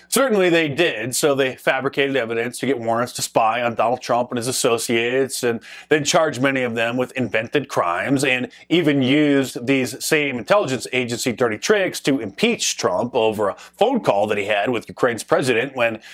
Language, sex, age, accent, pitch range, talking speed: English, male, 30-49, American, 125-150 Hz, 185 wpm